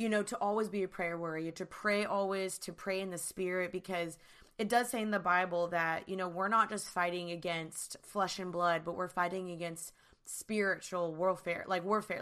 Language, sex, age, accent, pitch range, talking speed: English, female, 20-39, American, 180-210 Hz, 205 wpm